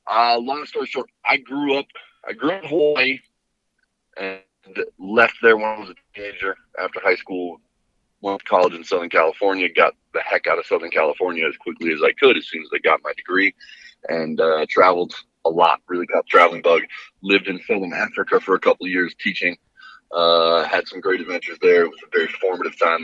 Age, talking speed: 30-49, 205 wpm